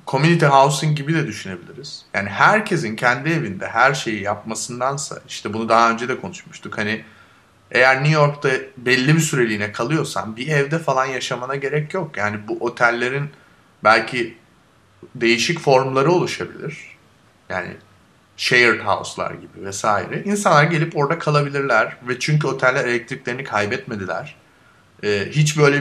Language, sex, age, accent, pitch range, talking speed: Turkish, male, 30-49, native, 115-150 Hz, 130 wpm